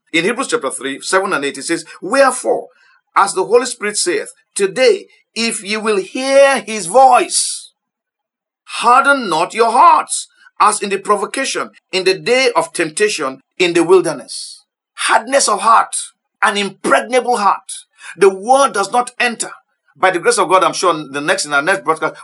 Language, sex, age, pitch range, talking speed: English, male, 50-69, 185-305 Hz, 165 wpm